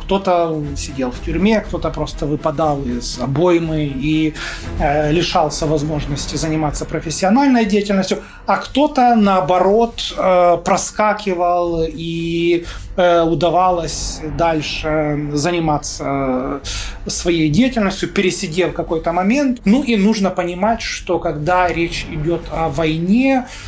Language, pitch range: Russian, 155-190 Hz